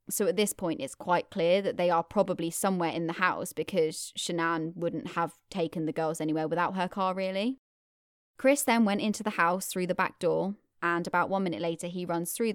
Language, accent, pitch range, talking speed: English, British, 165-190 Hz, 215 wpm